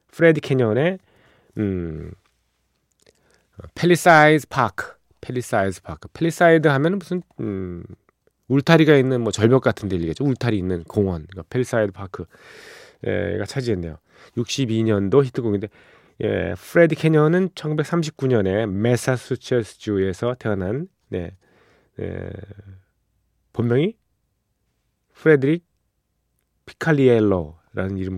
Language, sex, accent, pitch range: Korean, male, native, 95-145 Hz